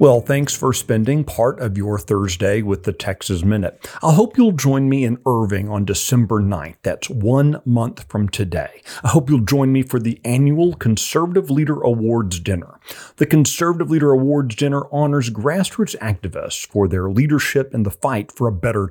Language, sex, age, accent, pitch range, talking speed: English, male, 40-59, American, 100-140 Hz, 180 wpm